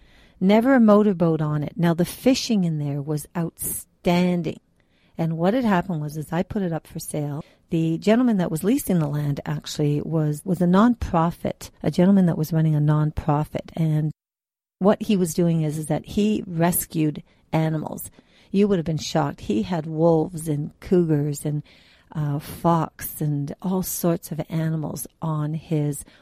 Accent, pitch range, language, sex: American, 155-195 Hz, English, female